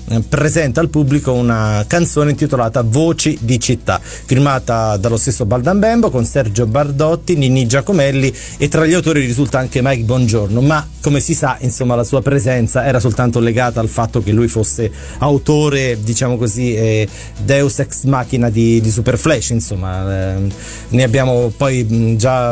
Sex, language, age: male, Italian, 30-49